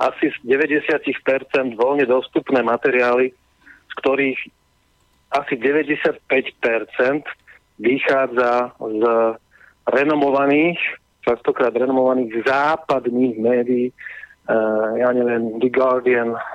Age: 40-59